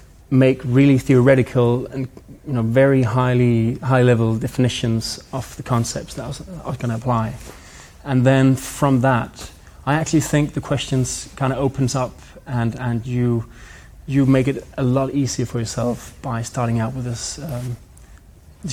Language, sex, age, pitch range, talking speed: English, male, 30-49, 110-130 Hz, 160 wpm